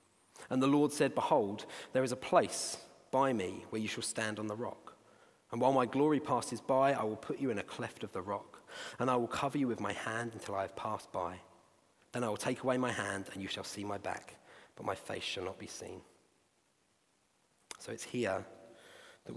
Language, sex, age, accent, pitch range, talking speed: English, male, 40-59, British, 100-125 Hz, 220 wpm